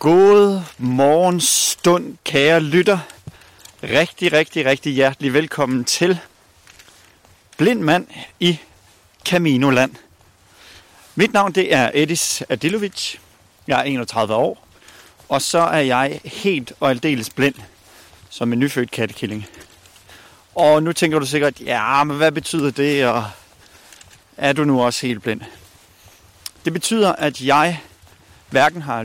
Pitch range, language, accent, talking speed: 95-155 Hz, Danish, native, 120 wpm